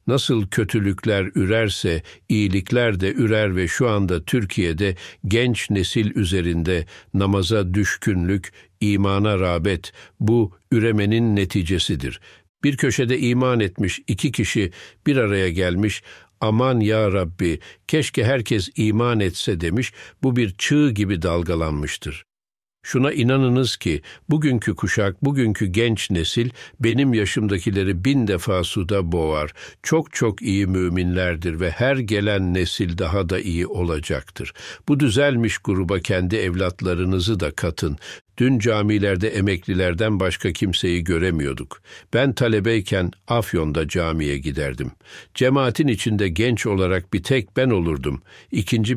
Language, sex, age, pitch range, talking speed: Turkish, male, 60-79, 90-115 Hz, 115 wpm